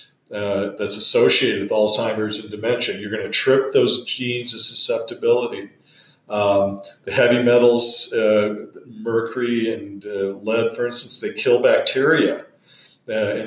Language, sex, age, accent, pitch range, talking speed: English, male, 40-59, American, 110-155 Hz, 140 wpm